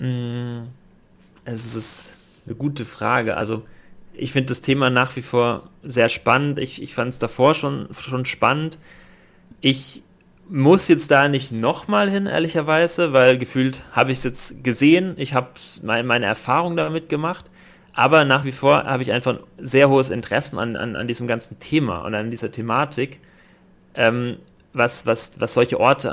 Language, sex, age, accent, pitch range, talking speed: German, male, 30-49, German, 115-140 Hz, 160 wpm